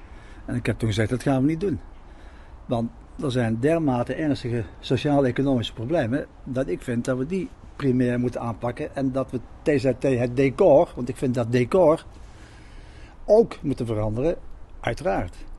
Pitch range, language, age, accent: 110-140 Hz, Dutch, 60-79, Dutch